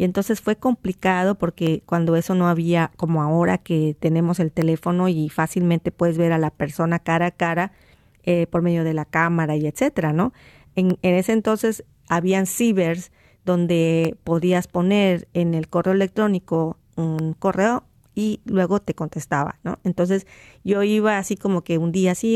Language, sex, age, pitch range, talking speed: Spanish, female, 40-59, 165-195 Hz, 170 wpm